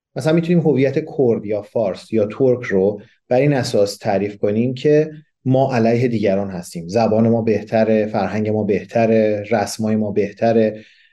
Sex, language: male, Persian